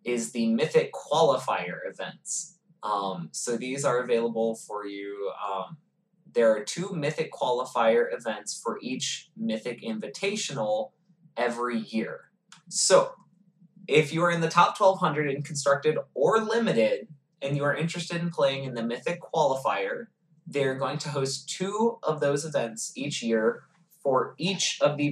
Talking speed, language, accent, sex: 145 wpm, English, American, male